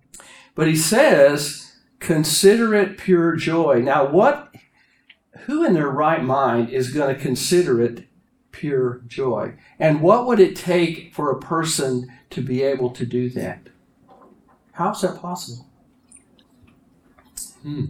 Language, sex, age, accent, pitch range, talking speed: English, male, 60-79, American, 125-170 Hz, 135 wpm